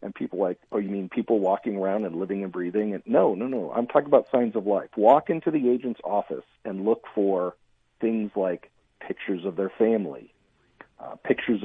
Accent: American